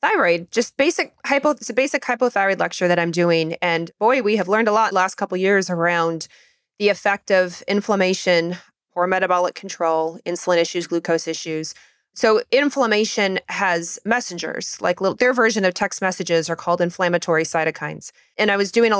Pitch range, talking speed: 170-220 Hz, 180 wpm